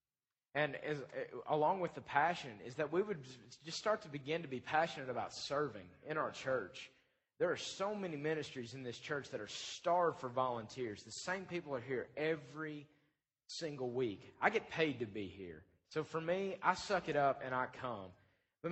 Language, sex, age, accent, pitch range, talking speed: English, male, 30-49, American, 130-170 Hz, 190 wpm